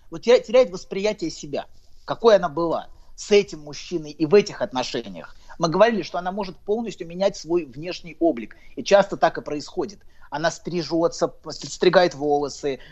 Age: 30-49